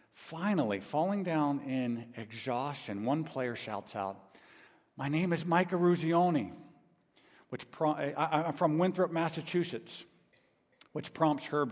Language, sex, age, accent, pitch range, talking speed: English, male, 50-69, American, 115-160 Hz, 110 wpm